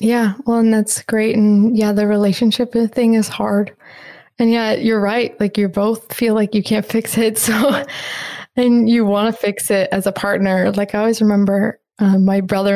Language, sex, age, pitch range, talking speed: English, female, 20-39, 200-225 Hz, 200 wpm